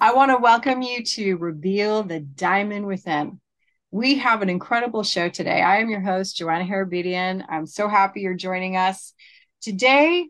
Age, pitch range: 30-49, 185-230 Hz